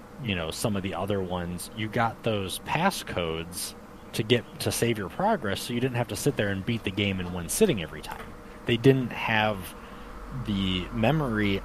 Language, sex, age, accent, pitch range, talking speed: English, male, 30-49, American, 95-120 Hz, 195 wpm